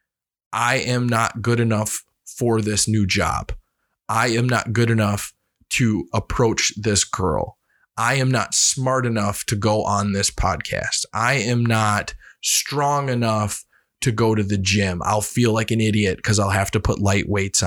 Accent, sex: American, male